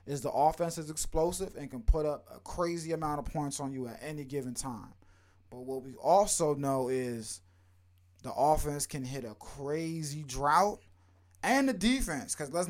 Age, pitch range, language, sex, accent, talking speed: 20-39, 110-150 Hz, English, male, American, 180 wpm